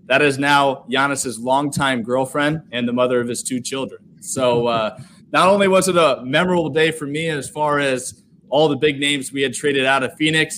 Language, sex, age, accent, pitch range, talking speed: English, male, 20-39, American, 125-155 Hz, 210 wpm